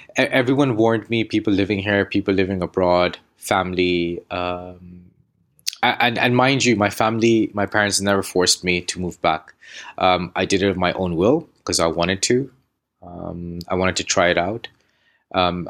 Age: 20-39